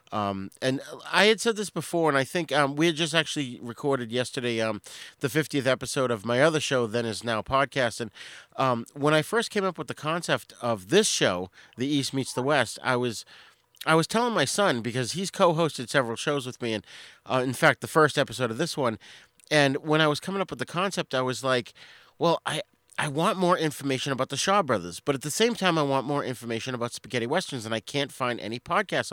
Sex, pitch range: male, 125-165 Hz